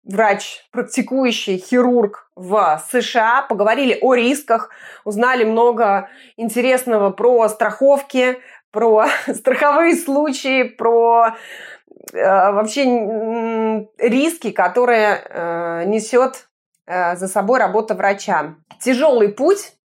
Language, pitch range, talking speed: Russian, 190-240 Hz, 95 wpm